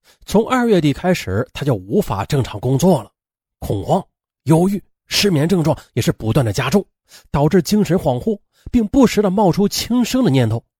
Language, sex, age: Chinese, male, 30-49